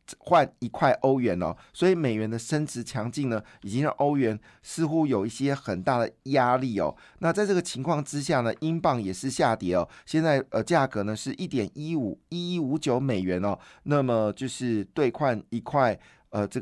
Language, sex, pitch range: Chinese, male, 110-150 Hz